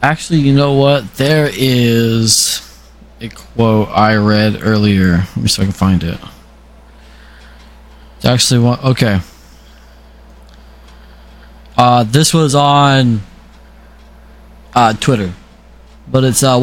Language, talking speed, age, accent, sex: English, 115 wpm, 20-39, American, male